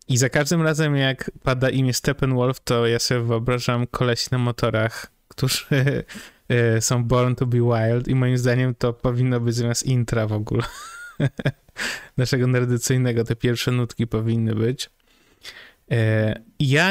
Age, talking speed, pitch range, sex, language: 20-39, 140 wpm, 120-145 Hz, male, Polish